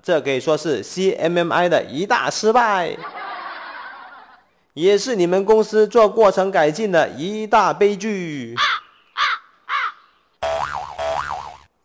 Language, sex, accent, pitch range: Chinese, male, native, 155-225 Hz